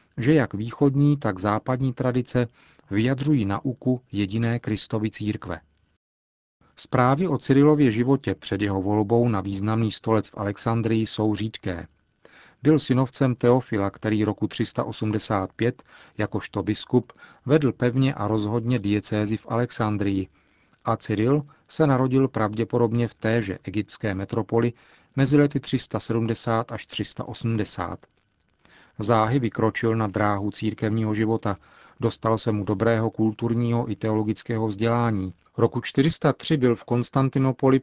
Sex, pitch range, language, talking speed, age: male, 105-125 Hz, Czech, 115 wpm, 40-59